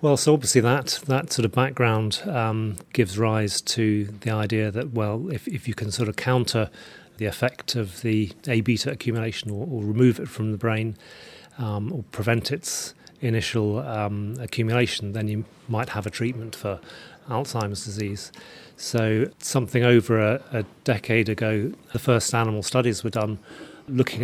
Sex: male